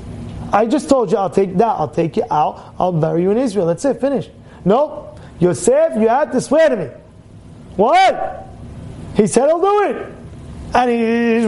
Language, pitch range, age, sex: English, 170-220 Hz, 30-49, male